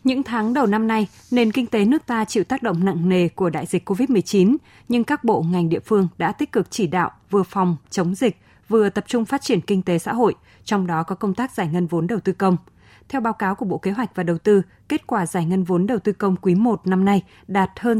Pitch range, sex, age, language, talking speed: 180-220 Hz, female, 20-39, Vietnamese, 260 wpm